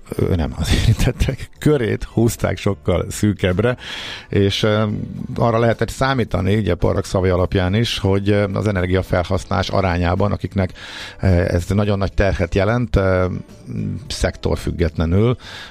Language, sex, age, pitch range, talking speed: Hungarian, male, 50-69, 85-110 Hz, 105 wpm